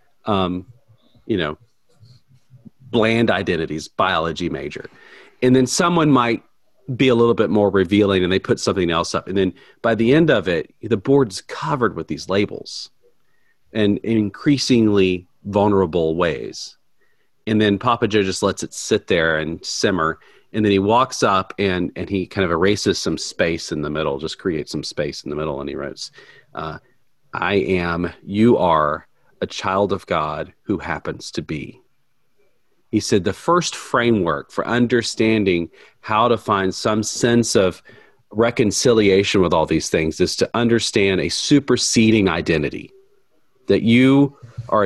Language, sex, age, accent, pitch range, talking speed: English, male, 40-59, American, 100-125 Hz, 160 wpm